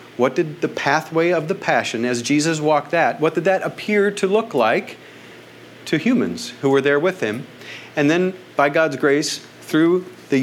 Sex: male